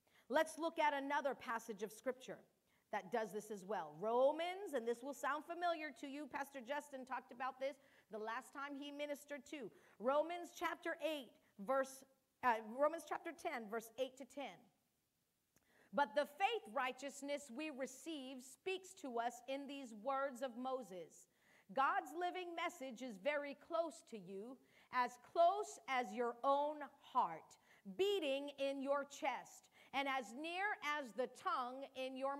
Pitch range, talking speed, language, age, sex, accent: 255-325 Hz, 155 wpm, English, 40-59, female, American